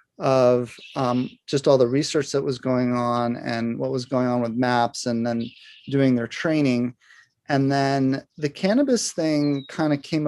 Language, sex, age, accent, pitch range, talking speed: English, male, 30-49, American, 125-145 Hz, 175 wpm